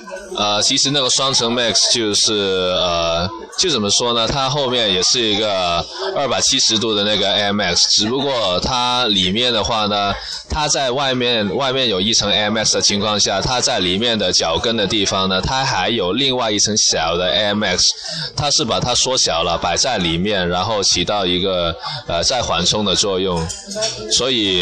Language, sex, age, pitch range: Chinese, male, 20-39, 95-120 Hz